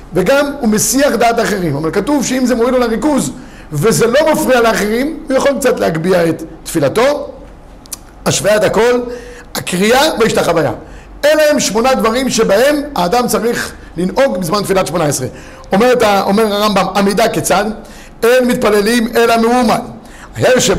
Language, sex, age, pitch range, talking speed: Hebrew, male, 50-69, 195-250 Hz, 135 wpm